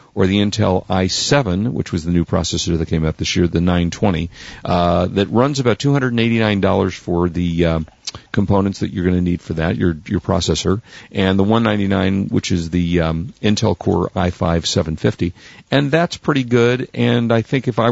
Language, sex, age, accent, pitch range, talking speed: English, male, 40-59, American, 90-110 Hz, 180 wpm